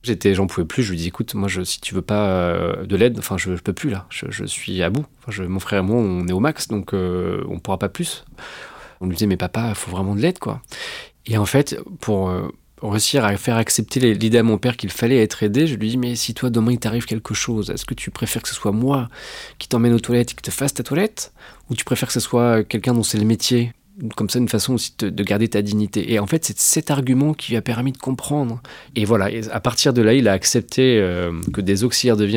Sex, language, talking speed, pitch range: male, French, 275 wpm, 100-125 Hz